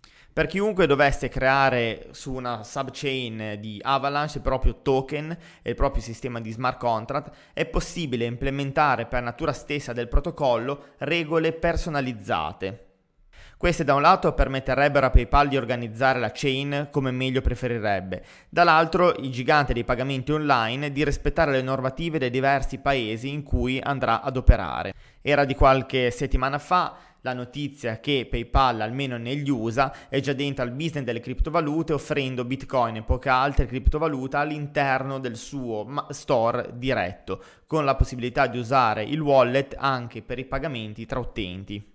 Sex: male